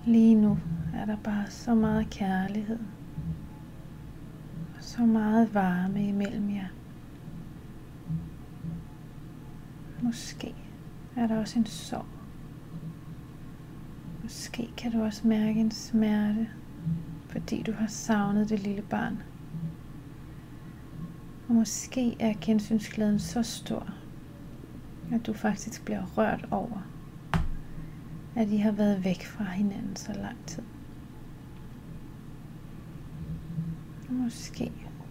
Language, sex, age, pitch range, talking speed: Danish, female, 30-49, 150-215 Hz, 95 wpm